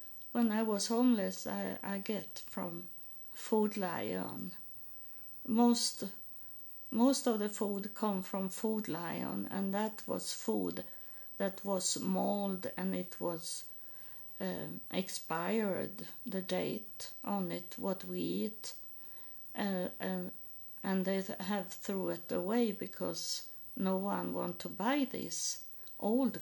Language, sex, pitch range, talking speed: English, female, 185-230 Hz, 125 wpm